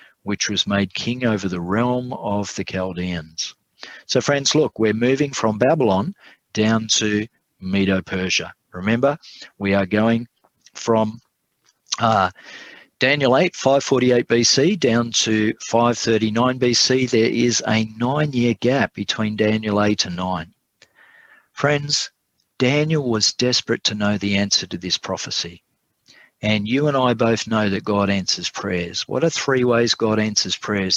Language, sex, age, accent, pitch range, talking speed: English, male, 40-59, Australian, 100-120 Hz, 140 wpm